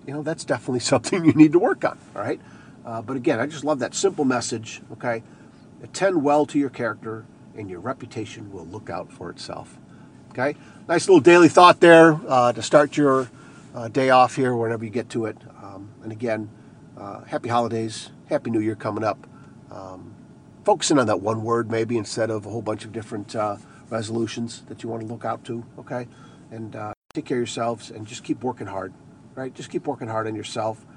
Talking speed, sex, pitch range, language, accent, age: 205 wpm, male, 110-135 Hz, English, American, 50-69